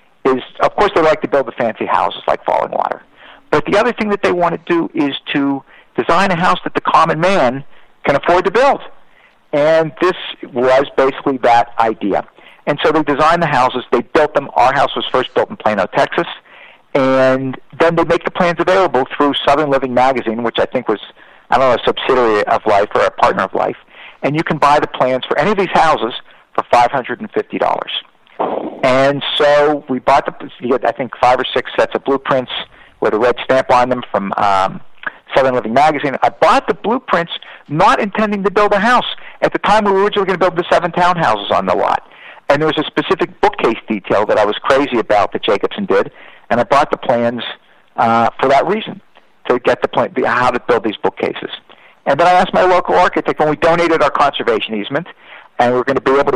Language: English